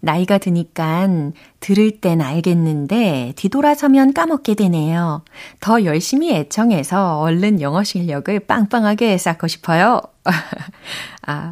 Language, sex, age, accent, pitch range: Korean, female, 30-49, native, 160-220 Hz